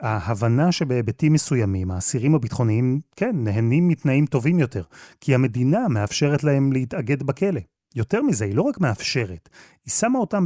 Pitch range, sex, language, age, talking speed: 110-145 Hz, male, Hebrew, 30-49, 145 wpm